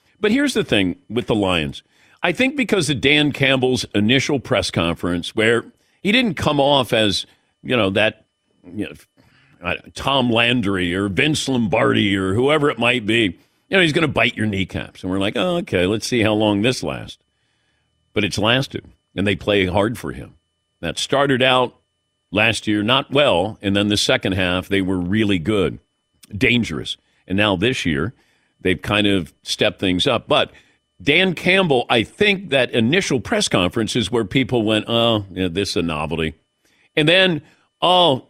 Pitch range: 100-140 Hz